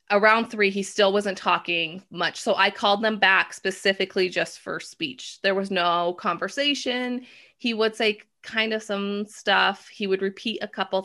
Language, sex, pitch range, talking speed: English, female, 180-215 Hz, 175 wpm